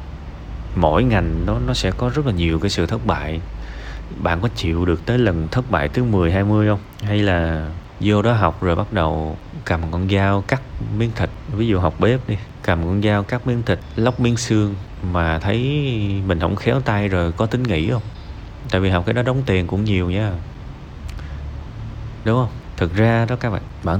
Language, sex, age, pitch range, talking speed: Vietnamese, male, 30-49, 80-110 Hz, 205 wpm